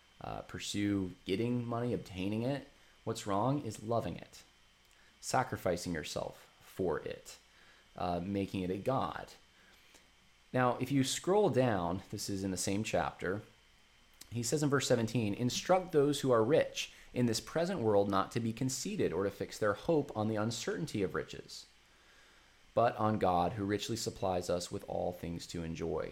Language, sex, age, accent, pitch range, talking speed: English, male, 20-39, American, 90-125 Hz, 165 wpm